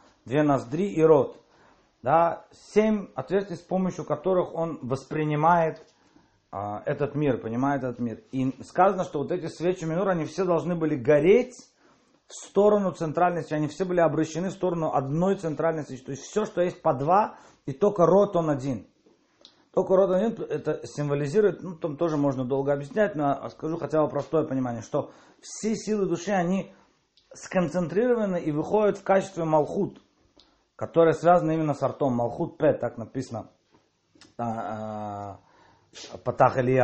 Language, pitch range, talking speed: Russian, 135-180 Hz, 150 wpm